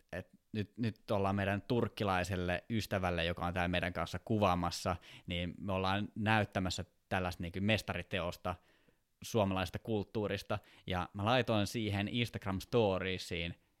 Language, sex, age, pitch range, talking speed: Finnish, male, 20-39, 95-115 Hz, 115 wpm